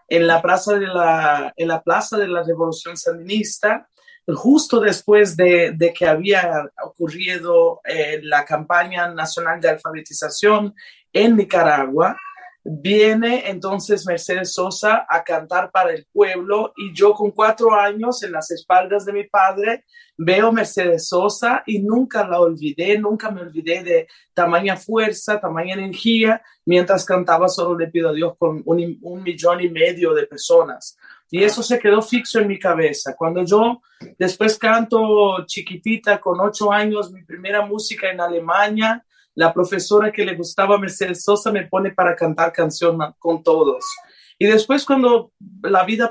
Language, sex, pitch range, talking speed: Spanish, male, 170-220 Hz, 155 wpm